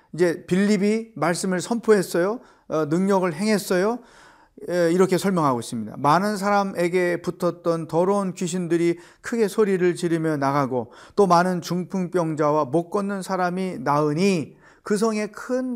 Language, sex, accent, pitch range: Korean, male, native, 145-185 Hz